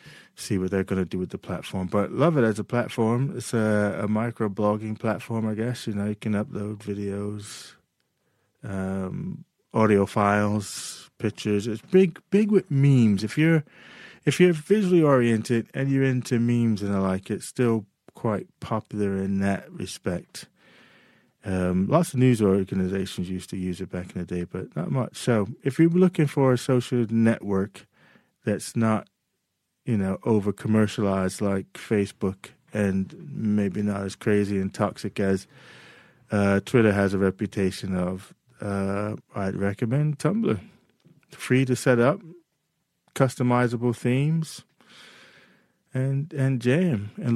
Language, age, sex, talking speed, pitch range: English, 30-49, male, 150 wpm, 100-130 Hz